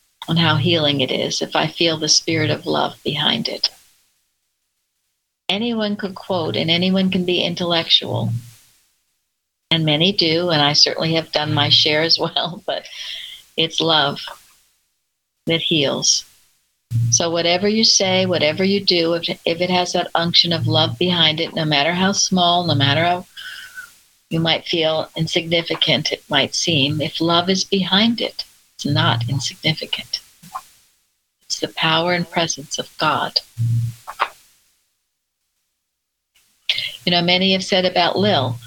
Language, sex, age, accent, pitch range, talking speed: English, female, 60-79, American, 135-180 Hz, 145 wpm